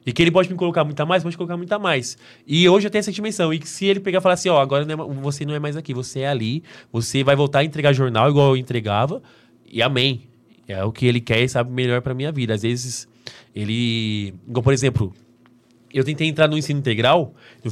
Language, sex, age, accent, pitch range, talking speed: Portuguese, male, 20-39, Brazilian, 115-140 Hz, 260 wpm